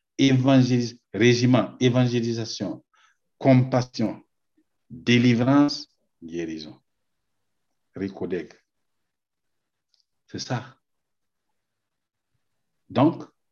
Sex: male